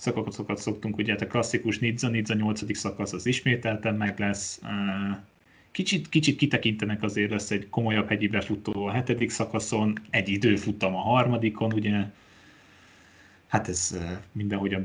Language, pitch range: Hungarian, 100-110 Hz